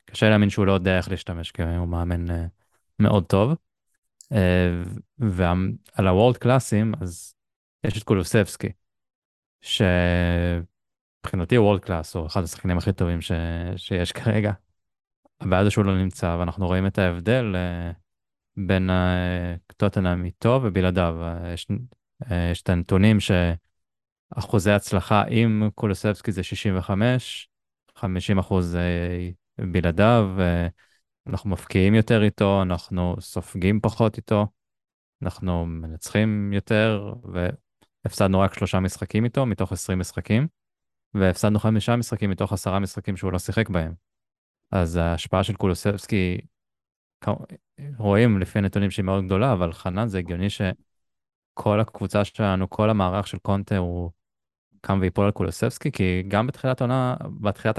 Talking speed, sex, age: 120 wpm, male, 20-39